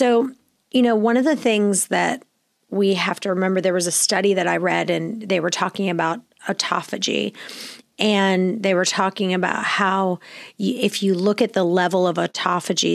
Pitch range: 180-205 Hz